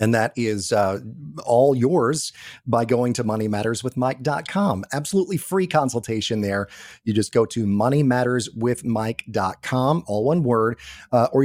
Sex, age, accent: male, 30-49, American